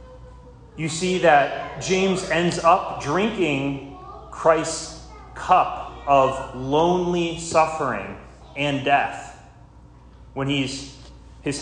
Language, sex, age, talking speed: English, male, 30-49, 85 wpm